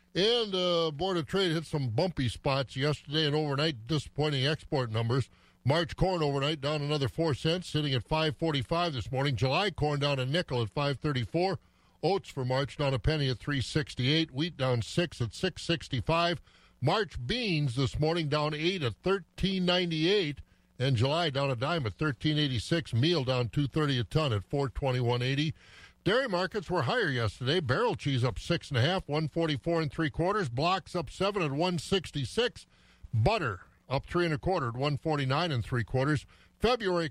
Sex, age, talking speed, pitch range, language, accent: male, 50-69, 170 wpm, 130-170 Hz, English, American